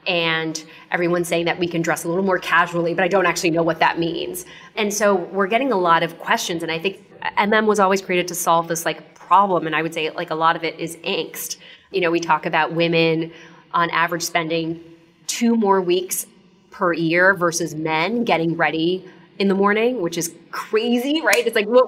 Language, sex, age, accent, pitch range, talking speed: English, female, 20-39, American, 165-195 Hz, 215 wpm